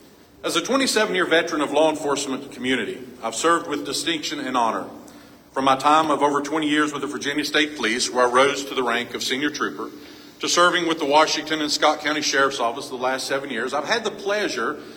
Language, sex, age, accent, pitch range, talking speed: English, male, 50-69, American, 135-155 Hz, 215 wpm